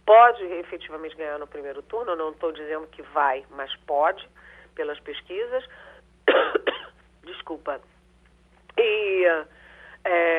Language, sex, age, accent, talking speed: Portuguese, female, 40-59, Brazilian, 105 wpm